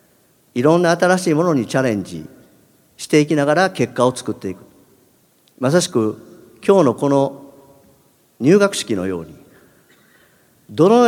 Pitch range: 120-170 Hz